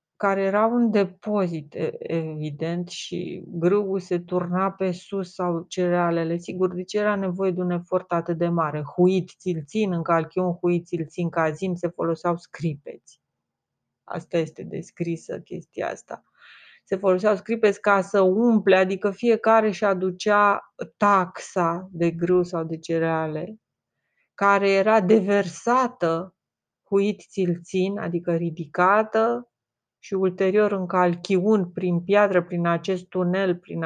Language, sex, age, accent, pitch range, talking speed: Romanian, female, 30-49, native, 170-200 Hz, 125 wpm